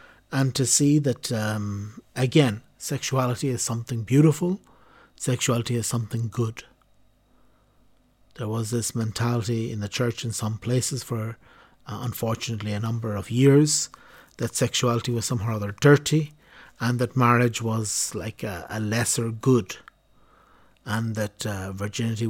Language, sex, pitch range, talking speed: English, male, 110-130 Hz, 135 wpm